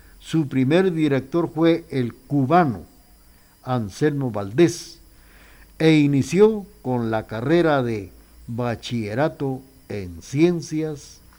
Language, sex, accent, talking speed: Spanish, male, Mexican, 90 wpm